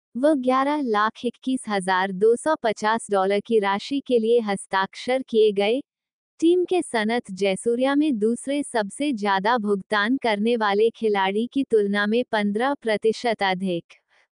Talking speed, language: 125 wpm, Hindi